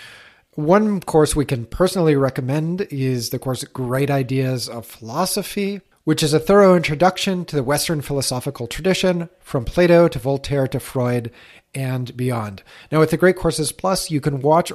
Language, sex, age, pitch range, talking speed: English, male, 30-49, 130-160 Hz, 165 wpm